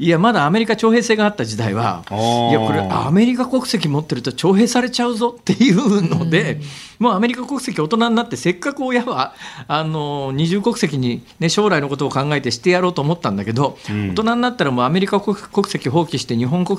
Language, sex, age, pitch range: Japanese, male, 40-59, 130-220 Hz